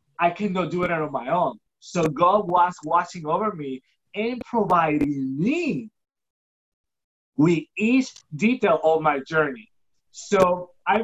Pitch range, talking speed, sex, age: 160-205 Hz, 130 wpm, male, 30-49